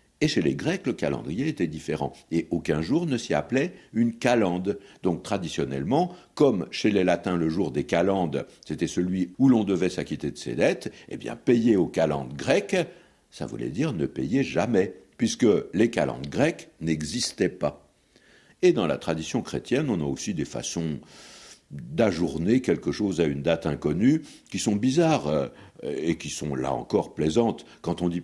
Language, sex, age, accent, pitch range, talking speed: French, male, 60-79, French, 75-110 Hz, 175 wpm